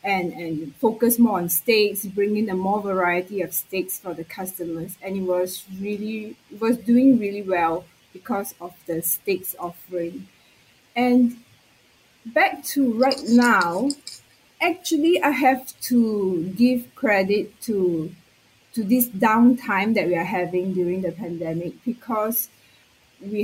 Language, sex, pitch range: English, female, 185-235 Hz